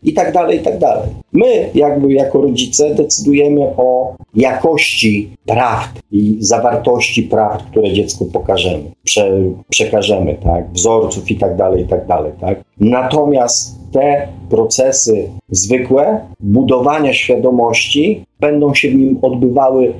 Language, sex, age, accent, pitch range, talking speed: Polish, male, 40-59, native, 110-155 Hz, 120 wpm